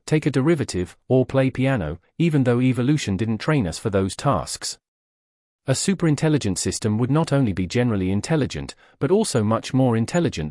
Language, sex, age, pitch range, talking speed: English, male, 40-59, 100-145 Hz, 165 wpm